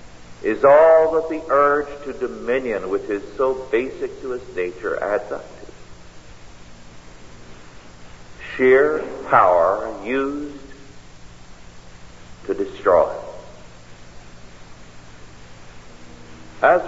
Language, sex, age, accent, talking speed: English, male, 50-69, American, 80 wpm